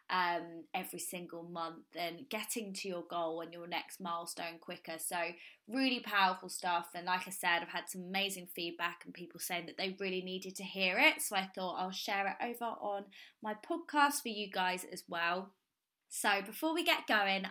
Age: 20-39